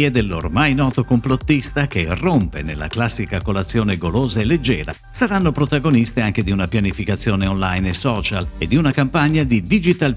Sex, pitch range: male, 95-140 Hz